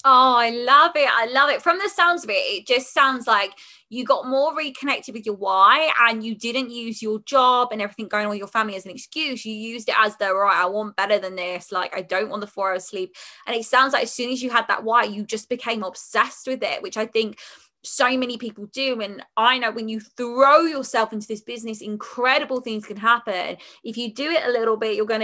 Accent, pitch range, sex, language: British, 215-265 Hz, female, English